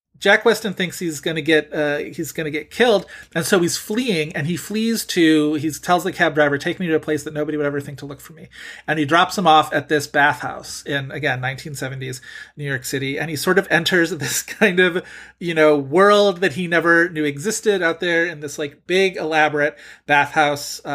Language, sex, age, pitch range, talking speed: English, male, 30-49, 145-180 Hz, 225 wpm